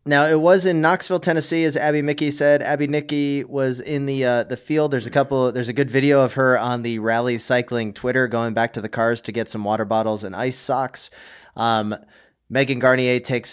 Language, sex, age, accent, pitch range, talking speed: English, male, 20-39, American, 120-150 Hz, 215 wpm